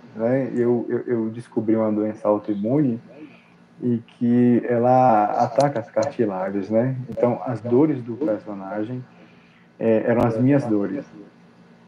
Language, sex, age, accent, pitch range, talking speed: Portuguese, male, 20-39, Brazilian, 110-140 Hz, 110 wpm